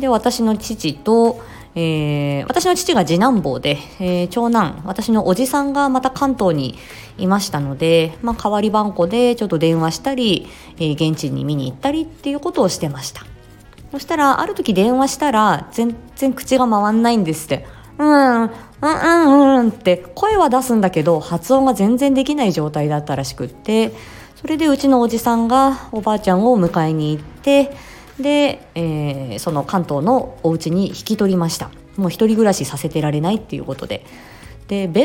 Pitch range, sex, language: 160-245 Hz, female, Japanese